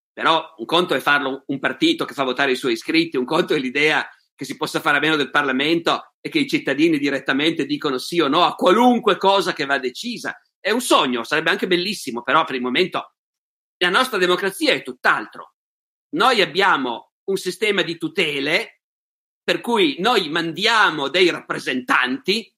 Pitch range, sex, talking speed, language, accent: 150-225 Hz, male, 180 wpm, Italian, native